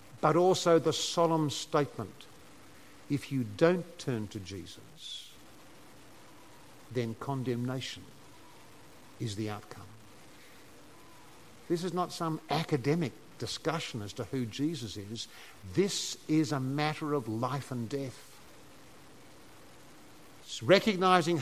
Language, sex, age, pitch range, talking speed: English, male, 50-69, 120-165 Hz, 100 wpm